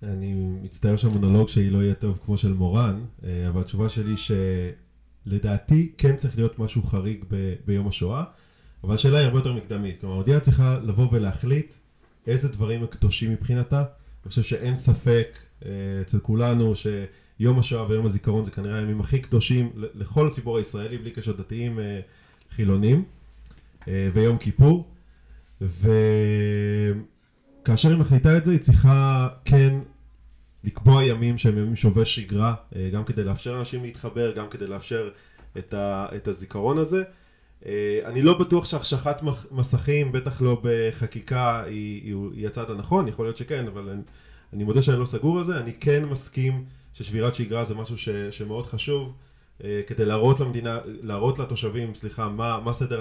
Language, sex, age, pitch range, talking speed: Hebrew, male, 20-39, 100-125 Hz, 150 wpm